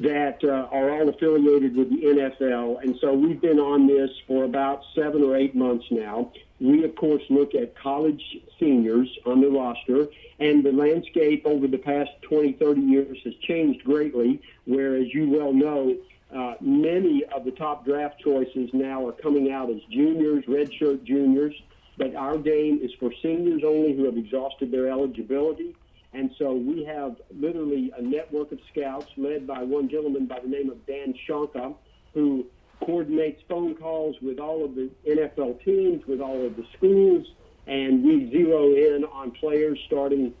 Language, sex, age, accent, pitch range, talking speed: English, male, 50-69, American, 130-155 Hz, 170 wpm